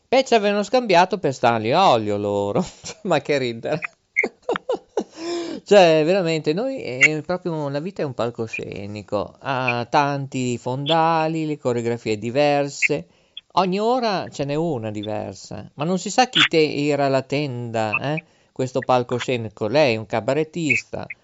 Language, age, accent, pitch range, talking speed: Italian, 50-69, native, 120-180 Hz, 140 wpm